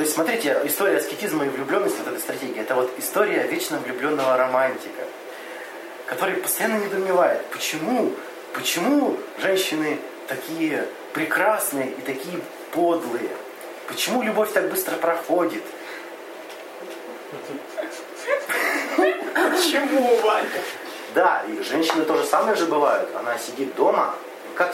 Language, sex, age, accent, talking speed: Russian, male, 30-49, native, 110 wpm